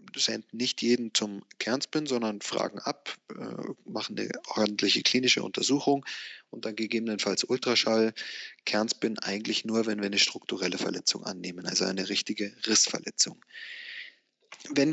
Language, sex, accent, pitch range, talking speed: English, male, German, 110-135 Hz, 125 wpm